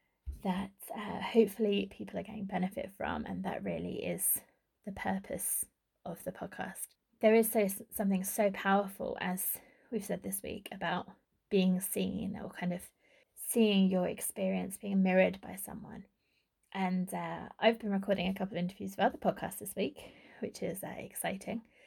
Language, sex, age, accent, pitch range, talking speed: English, female, 20-39, British, 185-215 Hz, 160 wpm